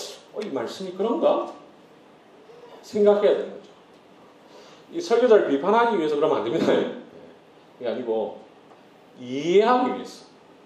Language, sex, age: Korean, male, 40-59